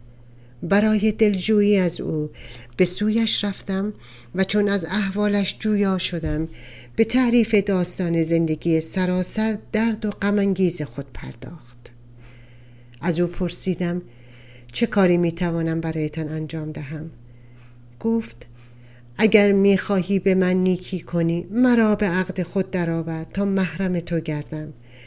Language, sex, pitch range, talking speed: Persian, female, 155-195 Hz, 115 wpm